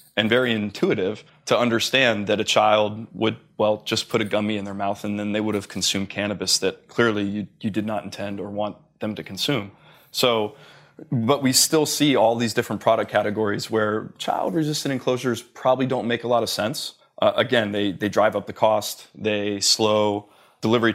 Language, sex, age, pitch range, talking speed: English, male, 20-39, 105-120 Hz, 190 wpm